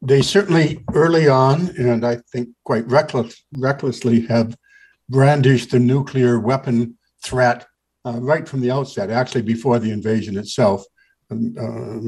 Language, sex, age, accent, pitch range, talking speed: English, male, 60-79, American, 115-130 Hz, 135 wpm